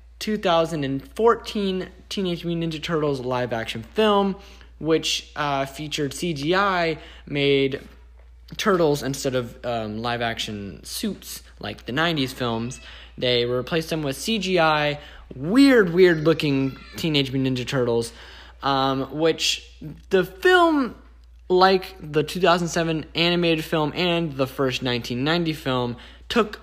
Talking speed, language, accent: 120 wpm, English, American